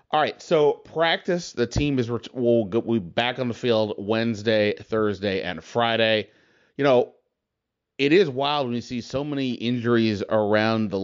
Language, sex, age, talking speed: English, male, 30-49, 165 wpm